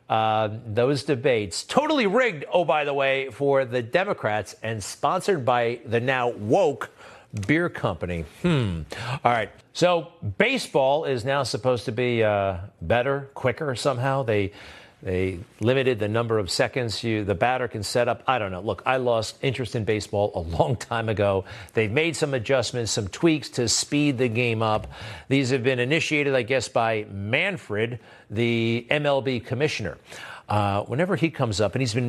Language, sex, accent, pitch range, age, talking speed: English, male, American, 110-155 Hz, 50-69, 170 wpm